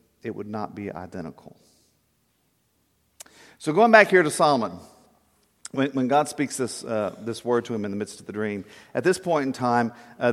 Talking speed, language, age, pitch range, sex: 190 wpm, English, 50-69, 105-140 Hz, male